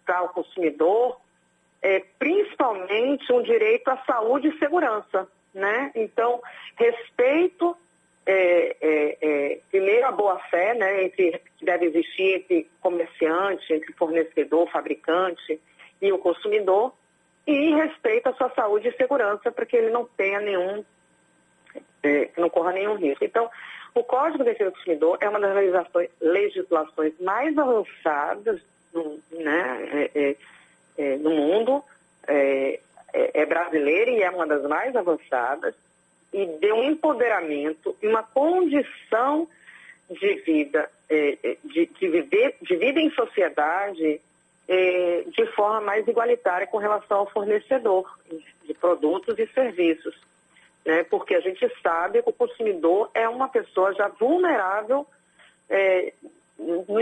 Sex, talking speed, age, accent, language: female, 120 wpm, 40-59, Brazilian, Portuguese